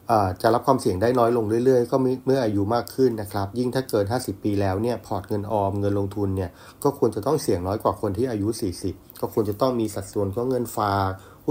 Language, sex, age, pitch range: Thai, male, 30-49, 100-125 Hz